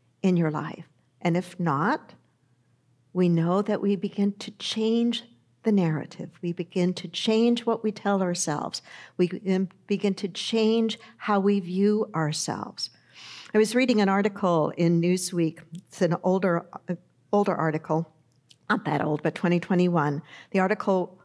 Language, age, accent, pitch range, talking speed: English, 50-69, American, 175-215 Hz, 145 wpm